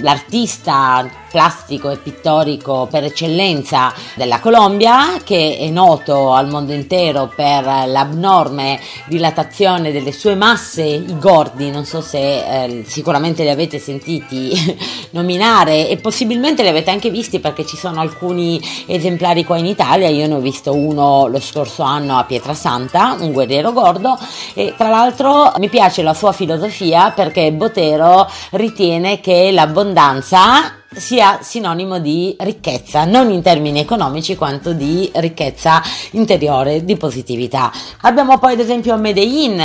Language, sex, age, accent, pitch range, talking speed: Italian, female, 30-49, native, 150-200 Hz, 135 wpm